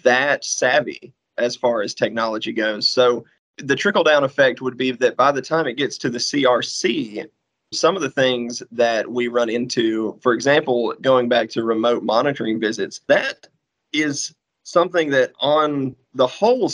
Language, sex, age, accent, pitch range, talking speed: English, male, 30-49, American, 120-130 Hz, 160 wpm